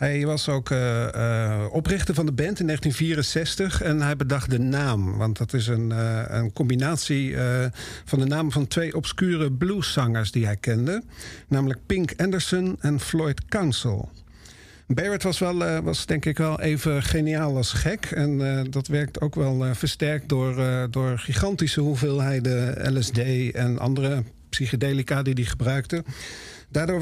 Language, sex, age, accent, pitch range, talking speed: Dutch, male, 50-69, Dutch, 125-160 Hz, 160 wpm